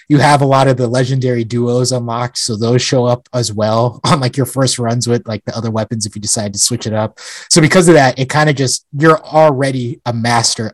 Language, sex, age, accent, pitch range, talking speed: English, male, 30-49, American, 110-135 Hz, 245 wpm